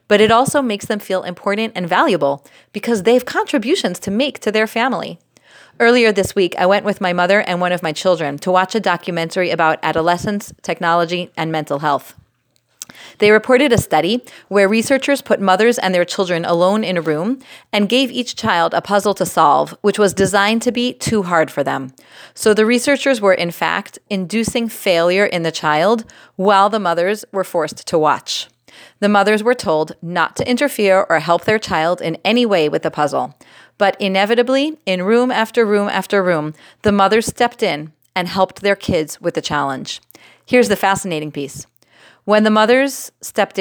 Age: 30-49